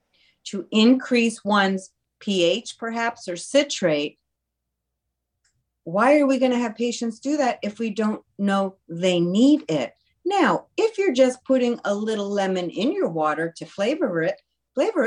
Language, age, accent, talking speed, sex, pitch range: English, 50-69, American, 150 wpm, female, 180-275 Hz